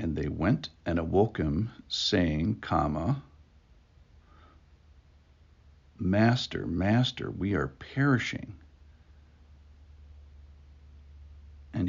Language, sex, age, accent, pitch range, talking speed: English, male, 60-79, American, 75-95 Hz, 65 wpm